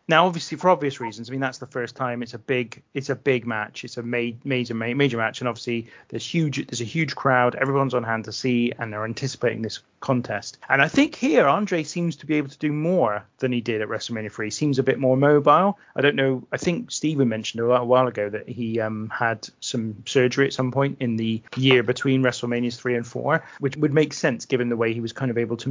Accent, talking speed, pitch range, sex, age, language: British, 245 wpm, 120-150 Hz, male, 30-49, English